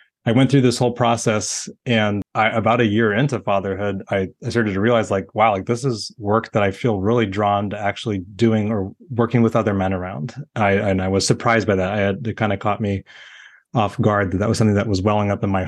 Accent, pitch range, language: American, 100-115 Hz, English